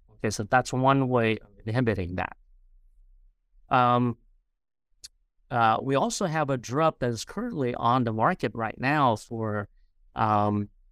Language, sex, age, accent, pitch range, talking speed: English, male, 50-69, American, 105-135 Hz, 135 wpm